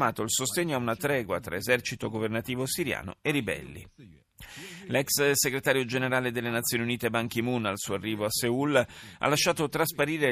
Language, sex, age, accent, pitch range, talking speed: Italian, male, 40-59, native, 105-135 Hz, 170 wpm